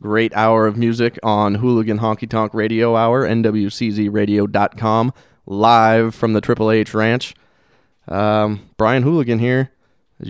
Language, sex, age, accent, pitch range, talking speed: English, male, 20-39, American, 105-120 Hz, 130 wpm